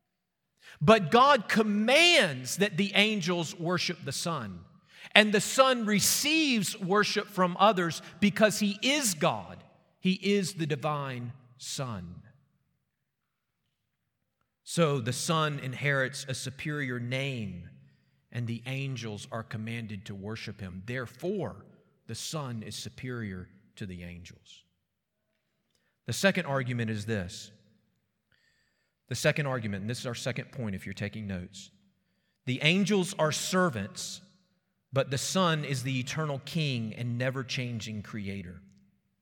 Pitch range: 115-180 Hz